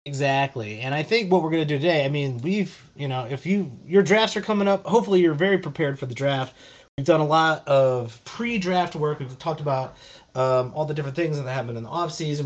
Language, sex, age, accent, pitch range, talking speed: English, male, 30-49, American, 125-175 Hz, 235 wpm